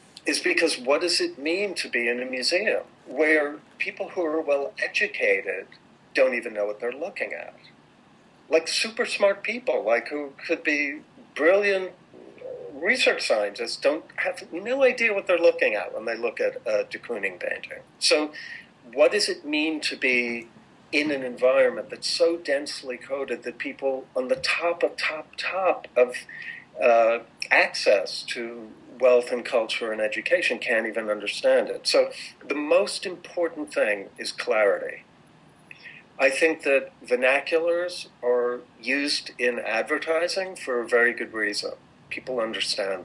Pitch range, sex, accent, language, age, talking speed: 125-200 Hz, male, American, English, 50-69, 150 wpm